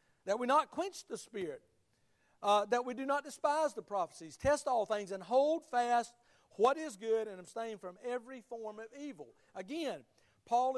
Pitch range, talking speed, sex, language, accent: 225-290 Hz, 180 wpm, male, English, American